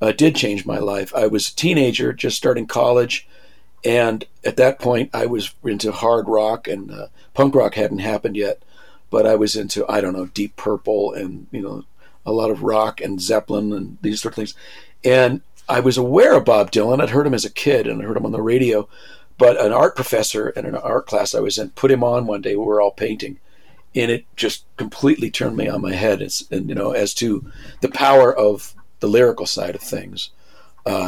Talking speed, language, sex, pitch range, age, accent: 220 wpm, English, male, 100-125 Hz, 50-69, American